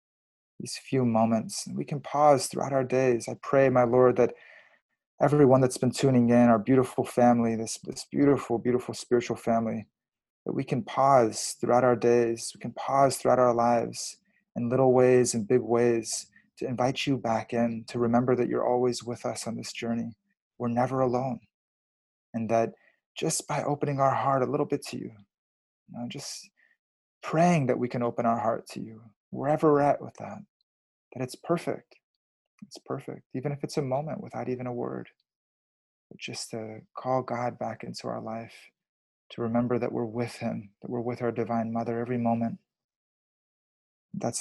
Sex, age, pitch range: male, 20-39, 115-130 Hz